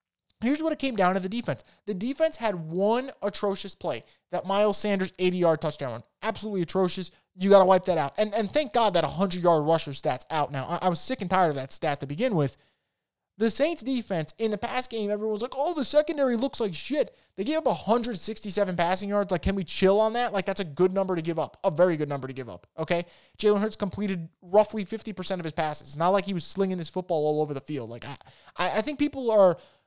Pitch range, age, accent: 160-220 Hz, 20-39, American